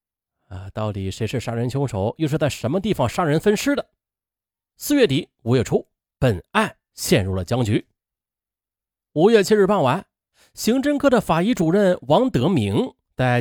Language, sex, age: Chinese, male, 30-49